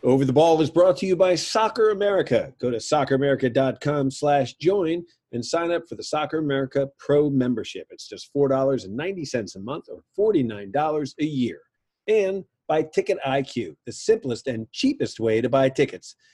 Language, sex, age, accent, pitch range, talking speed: English, male, 40-59, American, 100-155 Hz, 165 wpm